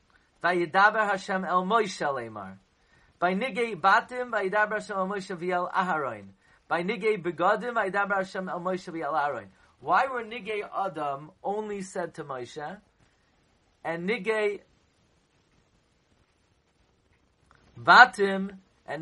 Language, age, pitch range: English, 40-59, 130-200 Hz